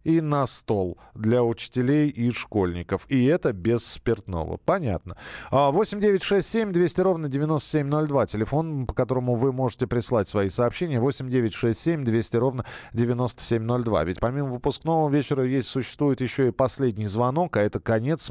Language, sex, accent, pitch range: Russian, male, native, 105-140 Hz